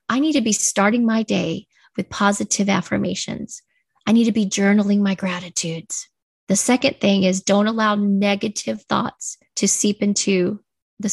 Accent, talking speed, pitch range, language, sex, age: American, 155 wpm, 195-235 Hz, English, female, 30-49